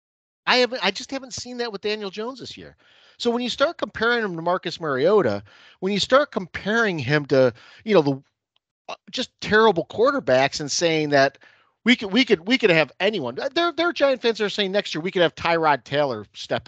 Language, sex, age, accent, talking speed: English, male, 40-59, American, 210 wpm